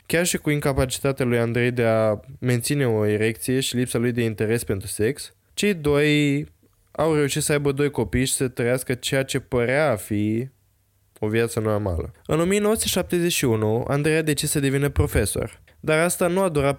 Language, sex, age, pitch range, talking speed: Romanian, male, 20-39, 115-150 Hz, 180 wpm